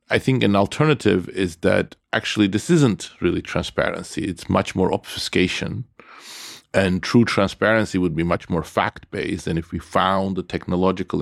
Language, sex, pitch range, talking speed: Finnish, male, 90-105 Hz, 160 wpm